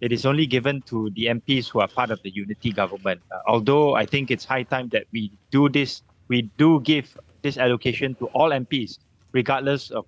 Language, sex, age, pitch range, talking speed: English, male, 20-39, 110-135 Hz, 210 wpm